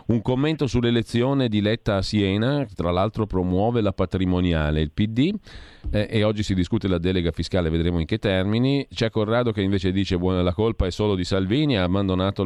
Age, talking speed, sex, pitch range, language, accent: 40-59, 200 wpm, male, 90-110 Hz, Italian, native